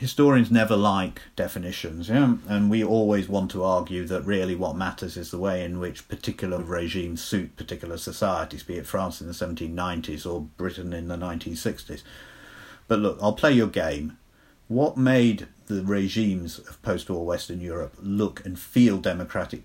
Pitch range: 90-105 Hz